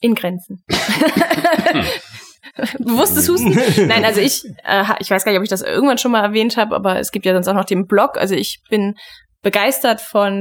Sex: female